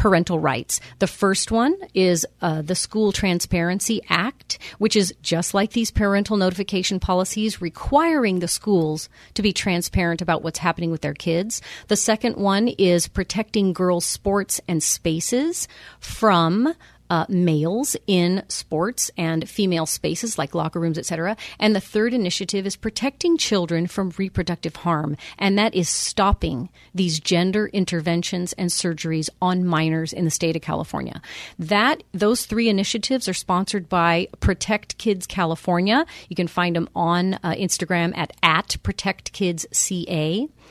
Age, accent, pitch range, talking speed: 40-59, American, 170-210 Hz, 145 wpm